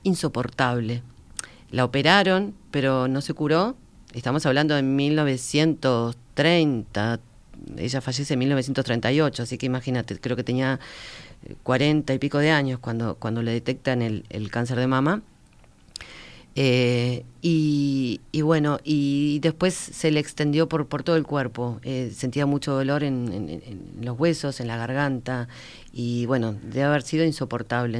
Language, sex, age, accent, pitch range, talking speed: Spanish, female, 40-59, Argentinian, 125-160 Hz, 145 wpm